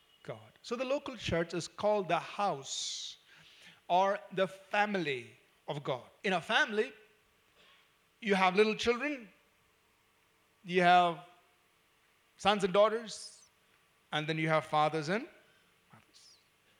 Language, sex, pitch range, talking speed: English, male, 175-245 Hz, 120 wpm